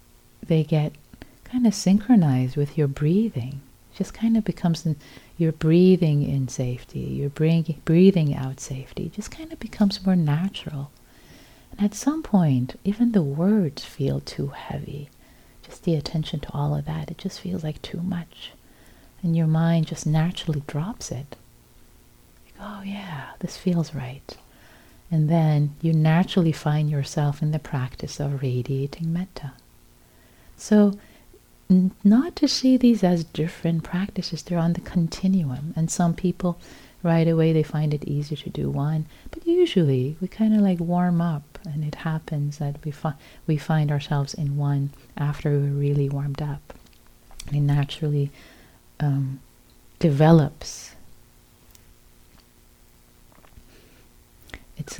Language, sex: English, female